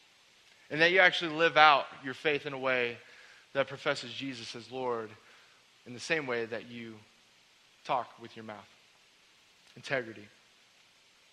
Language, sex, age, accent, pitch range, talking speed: English, male, 20-39, American, 130-160 Hz, 145 wpm